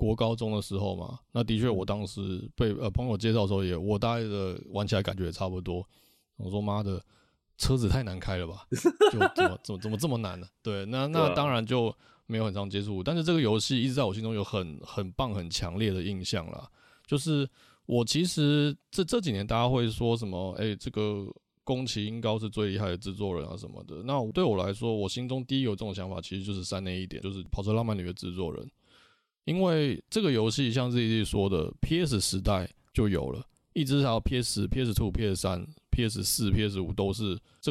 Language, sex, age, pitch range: Chinese, male, 20-39, 95-120 Hz